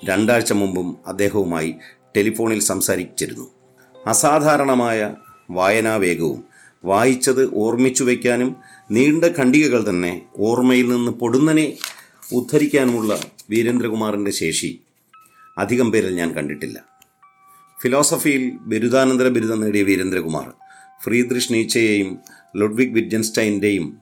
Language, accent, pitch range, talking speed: Malayalam, native, 100-125 Hz, 75 wpm